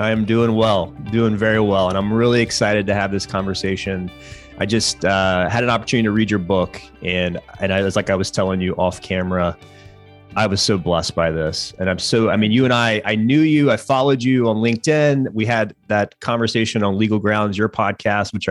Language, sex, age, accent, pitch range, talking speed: English, male, 30-49, American, 95-120 Hz, 225 wpm